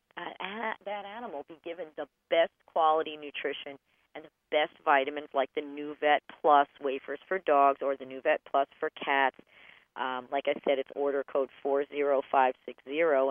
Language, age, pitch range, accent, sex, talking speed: English, 40-59, 140-200 Hz, American, female, 155 wpm